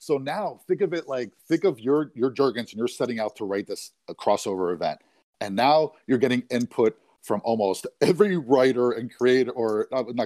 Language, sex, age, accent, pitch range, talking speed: English, male, 40-59, American, 115-175 Hz, 205 wpm